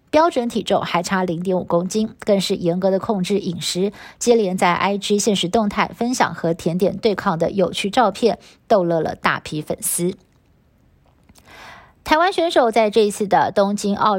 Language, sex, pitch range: Chinese, female, 180-225 Hz